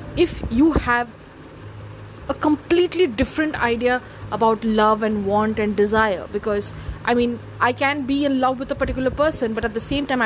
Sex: female